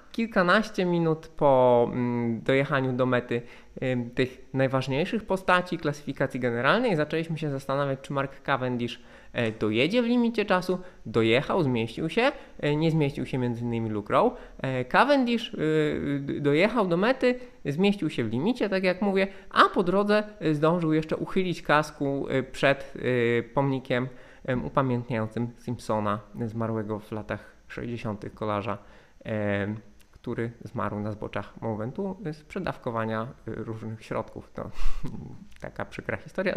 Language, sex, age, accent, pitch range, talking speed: Polish, male, 20-39, native, 120-165 Hz, 115 wpm